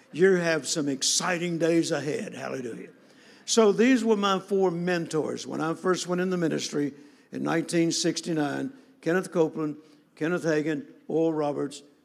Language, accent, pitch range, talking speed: English, American, 150-180 Hz, 140 wpm